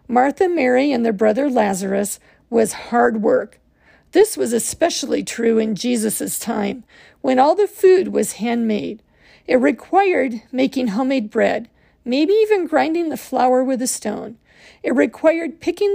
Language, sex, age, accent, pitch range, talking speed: English, female, 50-69, American, 235-325 Hz, 145 wpm